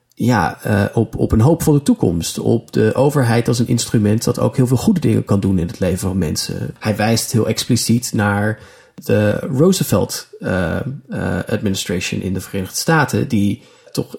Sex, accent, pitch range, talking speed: male, Dutch, 105-130 Hz, 185 wpm